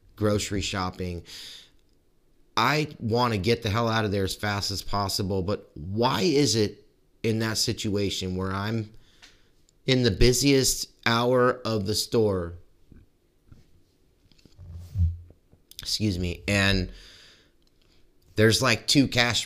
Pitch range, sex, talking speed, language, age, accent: 90-120 Hz, male, 115 wpm, English, 30-49, American